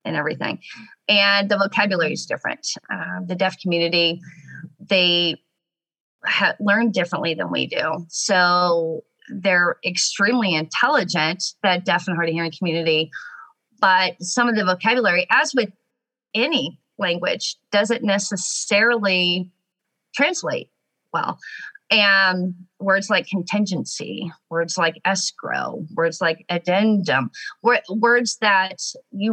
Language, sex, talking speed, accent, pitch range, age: English, female, 115 wpm, American, 175-215 Hz, 30-49